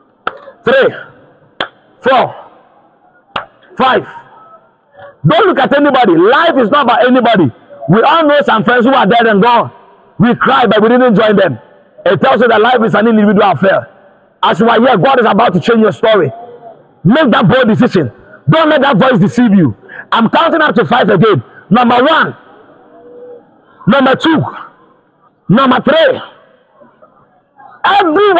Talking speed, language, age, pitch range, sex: 150 wpm, English, 50-69, 220-305 Hz, male